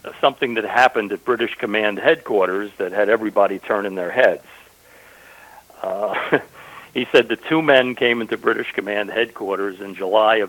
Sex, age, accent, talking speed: male, 60-79, American, 160 wpm